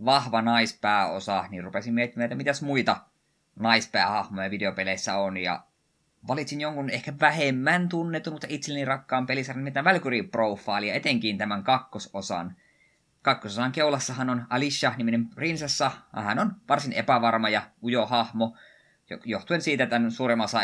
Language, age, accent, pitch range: Finnish, 20-39, native, 100-135 Hz